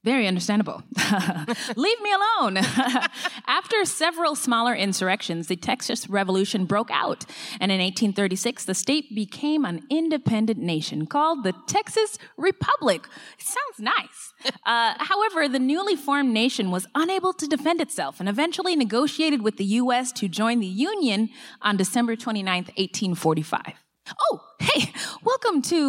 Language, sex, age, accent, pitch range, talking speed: English, female, 20-39, American, 185-295 Hz, 135 wpm